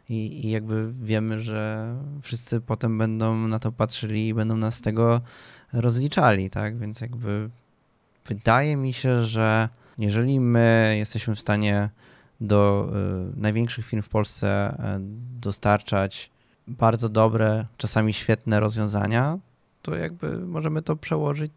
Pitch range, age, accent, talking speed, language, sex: 105-115 Hz, 20-39, native, 120 wpm, Polish, male